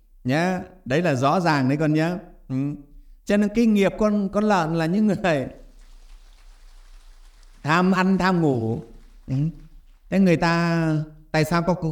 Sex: male